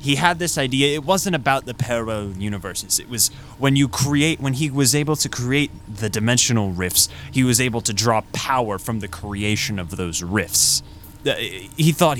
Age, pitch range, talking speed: 20-39, 95-120 Hz, 185 wpm